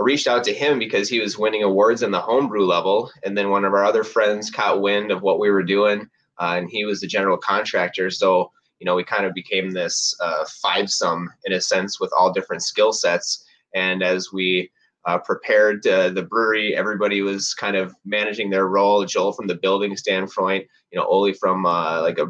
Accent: American